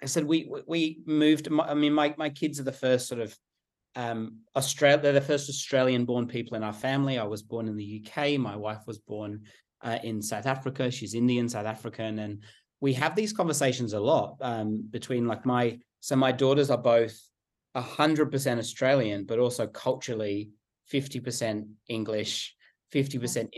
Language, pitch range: English, 110-130 Hz